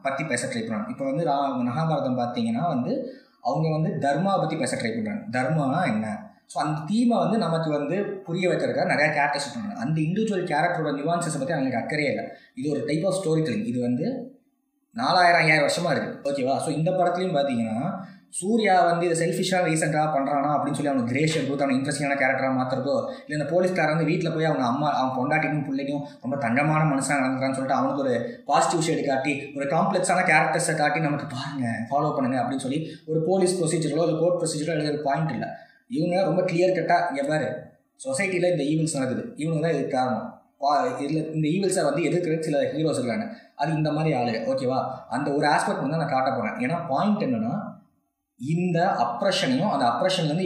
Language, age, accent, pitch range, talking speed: Tamil, 20-39, native, 145-185 Hz, 170 wpm